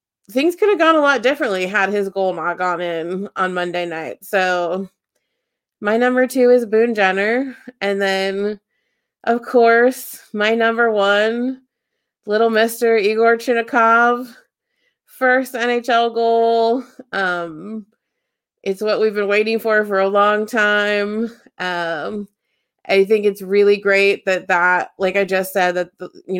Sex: female